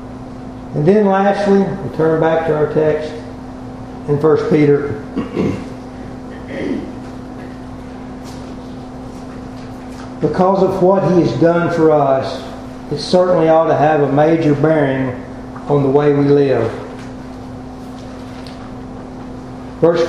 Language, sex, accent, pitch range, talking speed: English, male, American, 125-175 Hz, 100 wpm